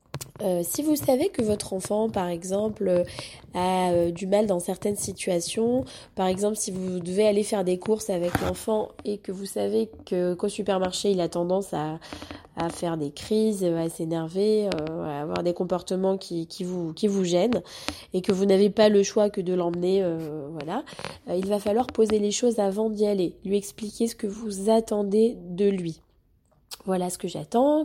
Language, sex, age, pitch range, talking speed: French, female, 20-39, 180-215 Hz, 190 wpm